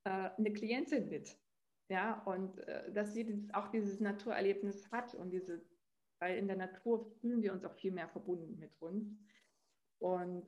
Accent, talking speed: German, 155 wpm